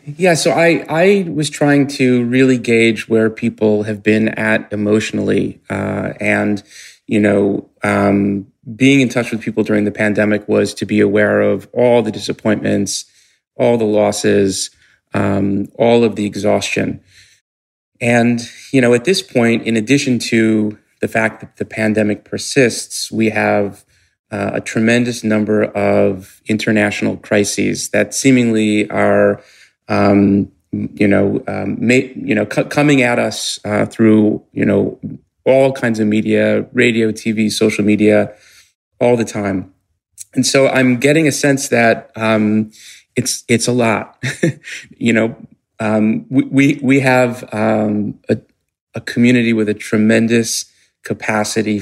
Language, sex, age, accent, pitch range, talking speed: English, male, 30-49, American, 105-120 Hz, 145 wpm